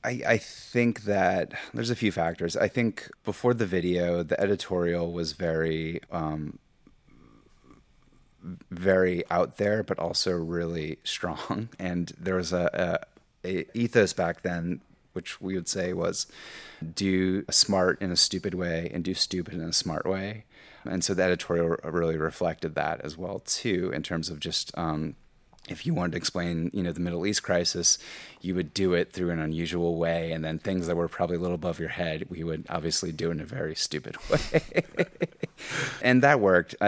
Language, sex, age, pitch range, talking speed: English, male, 30-49, 80-95 Hz, 175 wpm